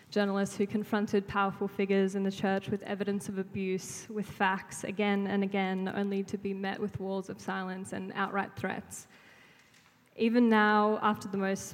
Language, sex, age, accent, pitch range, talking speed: English, female, 10-29, Australian, 195-210 Hz, 170 wpm